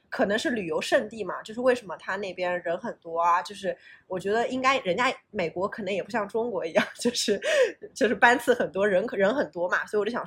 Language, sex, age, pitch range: Chinese, female, 20-39, 210-320 Hz